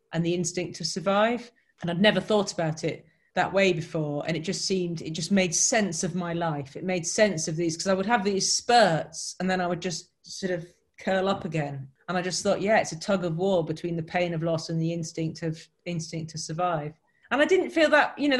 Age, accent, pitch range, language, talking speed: 30-49, British, 160-195 Hz, English, 245 wpm